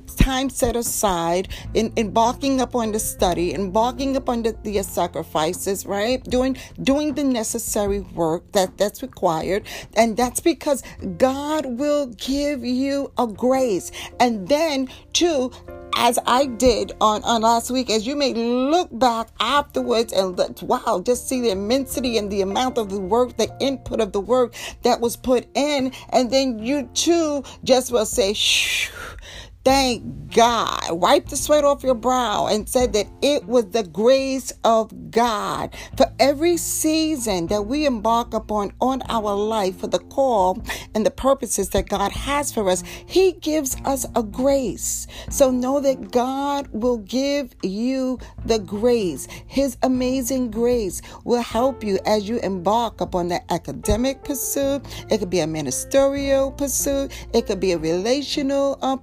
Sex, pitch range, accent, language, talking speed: female, 215-270 Hz, American, English, 160 wpm